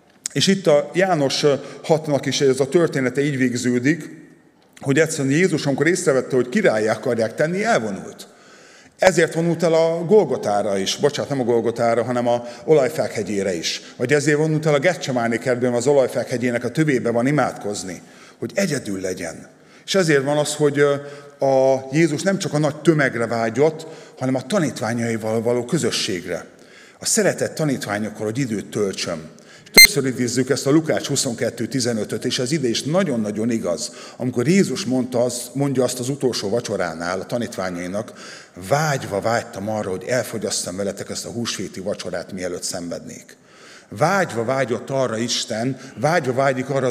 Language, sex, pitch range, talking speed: Hungarian, male, 120-155 Hz, 150 wpm